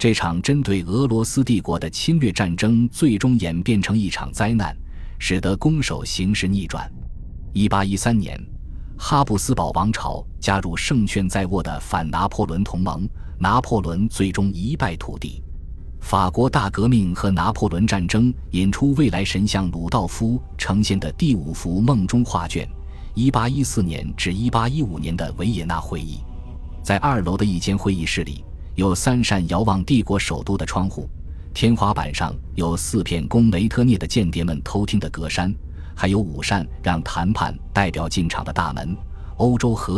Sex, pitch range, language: male, 80-110 Hz, Chinese